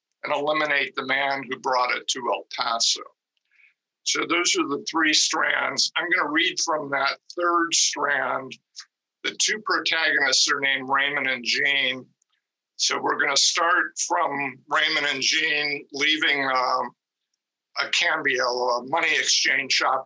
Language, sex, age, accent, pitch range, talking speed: English, male, 50-69, American, 130-150 Hz, 140 wpm